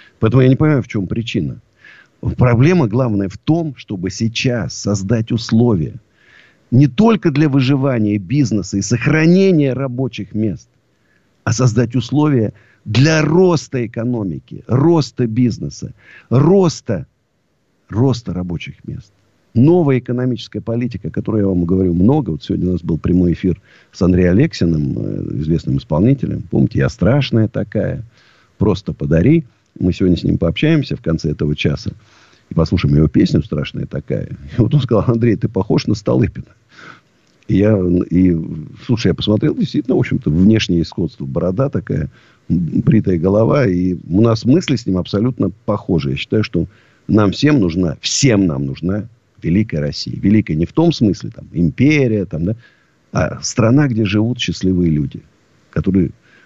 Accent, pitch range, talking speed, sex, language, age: native, 95-130 Hz, 145 wpm, male, Russian, 50-69